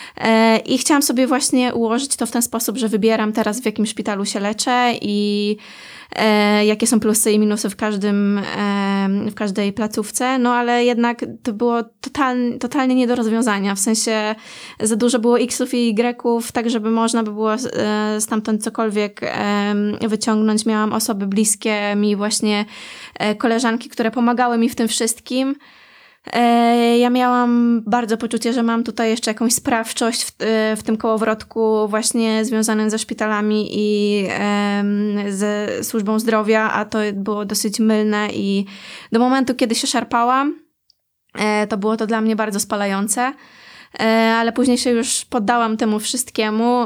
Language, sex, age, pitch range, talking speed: Polish, female, 20-39, 215-240 Hz, 150 wpm